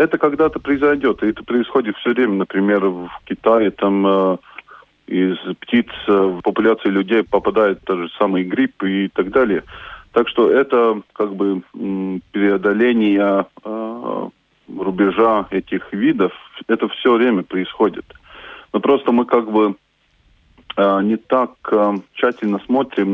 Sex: male